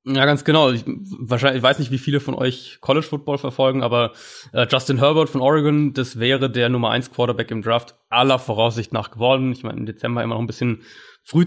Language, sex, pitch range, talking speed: German, male, 115-140 Hz, 205 wpm